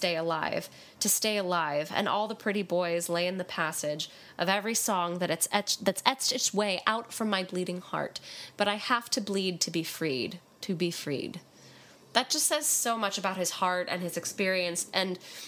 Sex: female